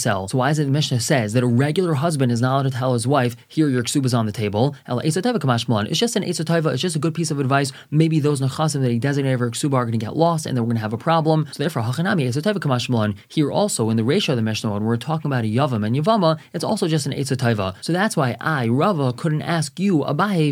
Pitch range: 120-160 Hz